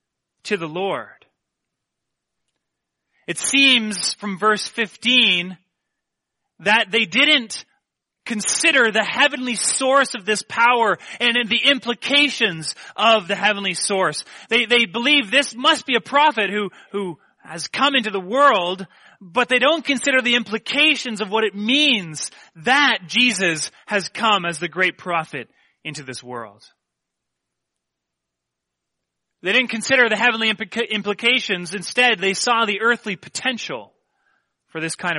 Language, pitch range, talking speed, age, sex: English, 175-255 Hz, 130 wpm, 30-49, male